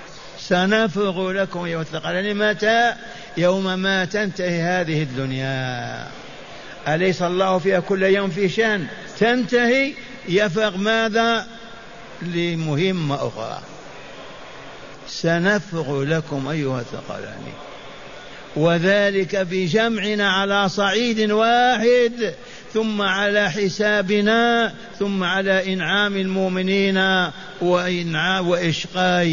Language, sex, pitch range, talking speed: Arabic, male, 170-200 Hz, 80 wpm